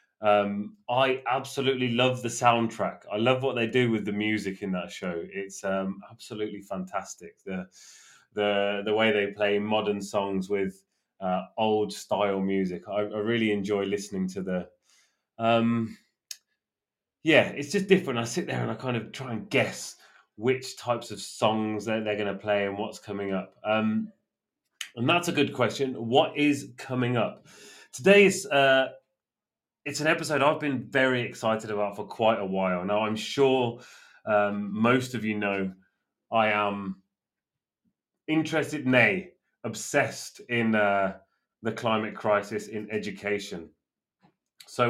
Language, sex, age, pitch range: English, male, 20-39, 105-130 Hz